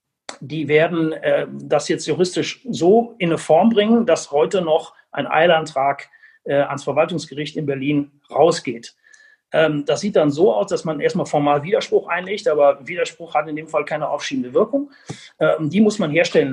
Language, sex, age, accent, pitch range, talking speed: German, male, 40-59, German, 150-210 Hz, 175 wpm